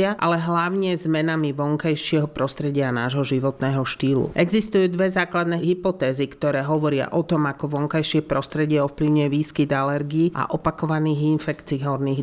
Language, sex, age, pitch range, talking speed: Slovak, male, 40-59, 140-165 Hz, 130 wpm